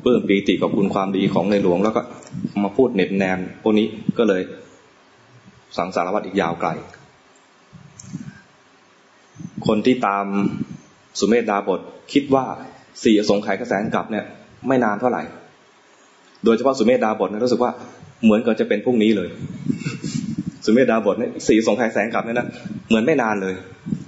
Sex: male